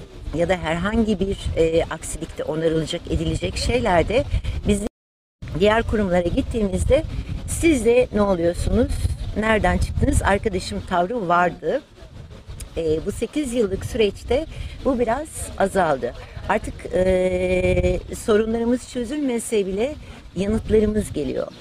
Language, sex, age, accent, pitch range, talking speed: Turkish, female, 60-79, native, 160-225 Hz, 105 wpm